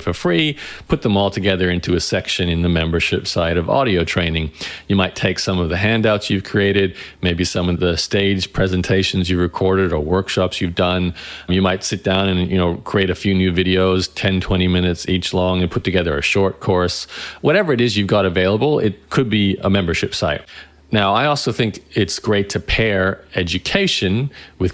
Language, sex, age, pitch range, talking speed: English, male, 40-59, 90-105 Hz, 200 wpm